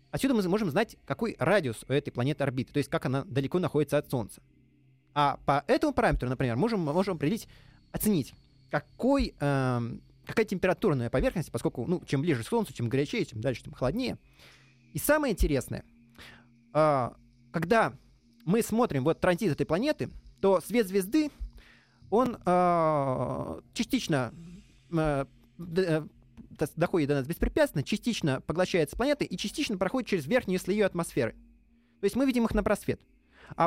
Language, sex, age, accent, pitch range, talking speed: Russian, male, 20-39, native, 135-200 Hz, 155 wpm